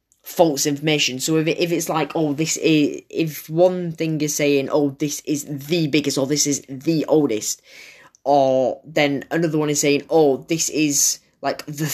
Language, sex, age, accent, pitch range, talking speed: English, female, 10-29, British, 135-175 Hz, 185 wpm